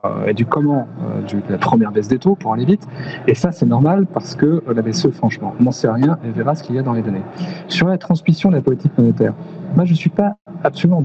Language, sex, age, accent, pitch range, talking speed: French, male, 40-59, French, 120-165 Hz, 250 wpm